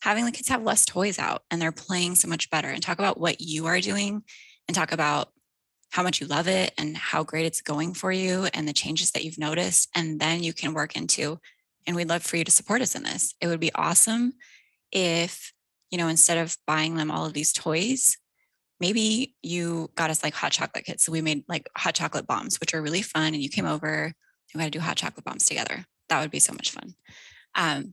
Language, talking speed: English, 240 wpm